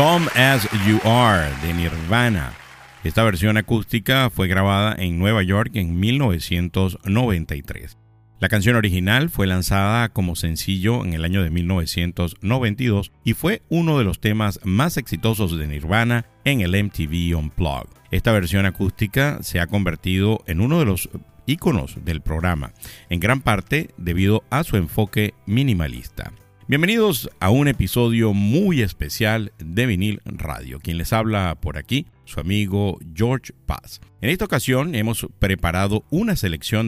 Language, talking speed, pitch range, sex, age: Spanish, 145 wpm, 90-120 Hz, male, 50-69